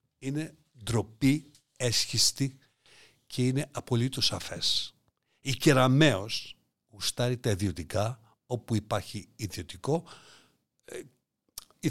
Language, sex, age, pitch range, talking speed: Greek, male, 60-79, 105-135 Hz, 85 wpm